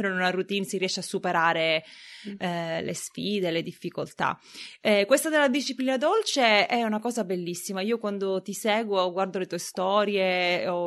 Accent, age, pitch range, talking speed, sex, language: native, 20-39, 180-215 Hz, 165 wpm, female, Italian